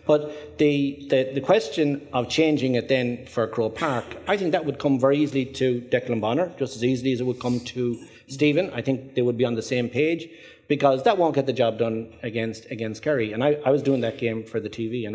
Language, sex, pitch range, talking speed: English, male, 115-140 Hz, 240 wpm